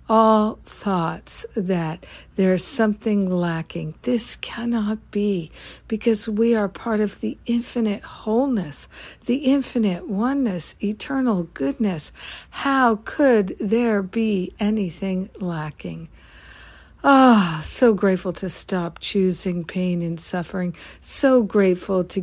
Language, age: English, 60-79